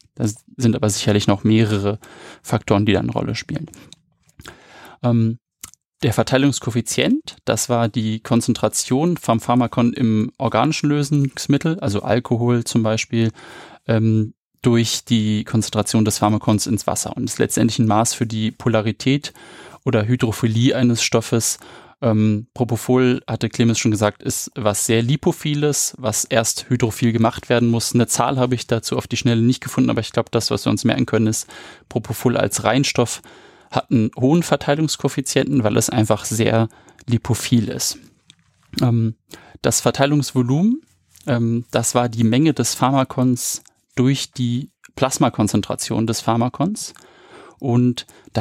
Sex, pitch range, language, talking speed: male, 115-130 Hz, German, 140 wpm